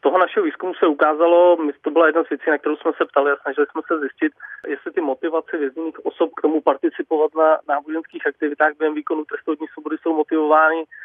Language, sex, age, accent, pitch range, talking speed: Czech, male, 30-49, native, 150-160 Hz, 205 wpm